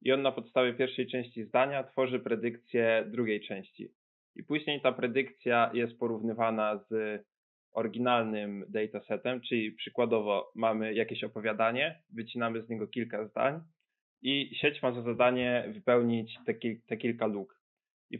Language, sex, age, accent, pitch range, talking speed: Polish, male, 20-39, native, 110-130 Hz, 135 wpm